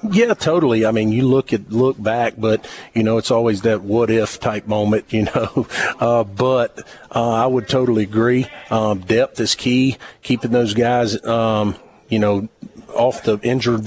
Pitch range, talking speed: 110-125 Hz, 175 wpm